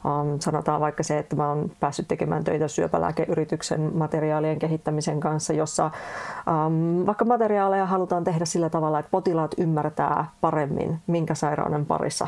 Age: 30-49